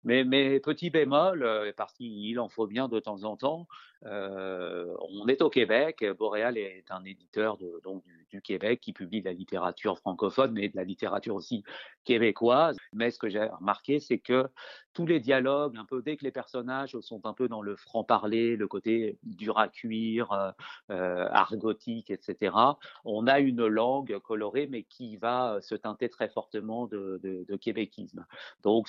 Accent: French